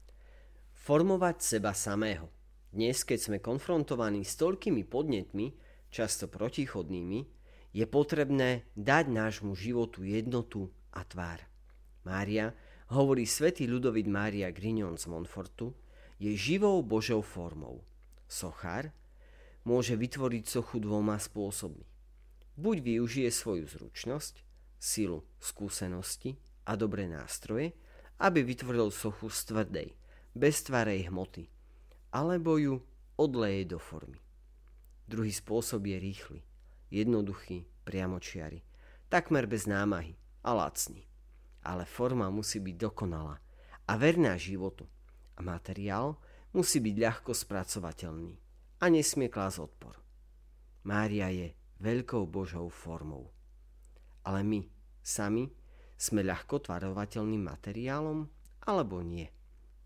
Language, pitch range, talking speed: Slovak, 85-120 Hz, 105 wpm